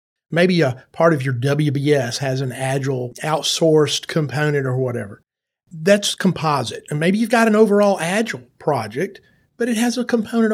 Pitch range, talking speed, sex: 140-170 Hz, 160 wpm, male